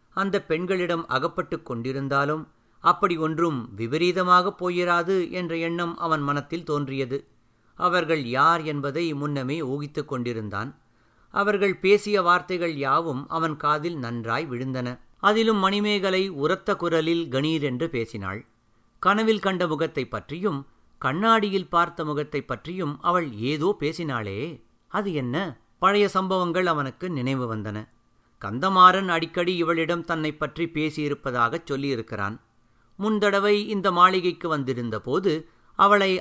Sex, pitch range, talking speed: male, 135-190 Hz, 105 wpm